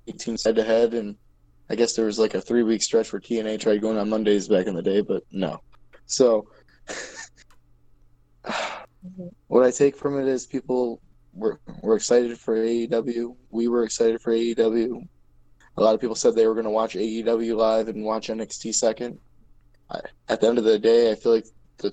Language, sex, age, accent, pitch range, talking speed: English, male, 10-29, American, 100-120 Hz, 190 wpm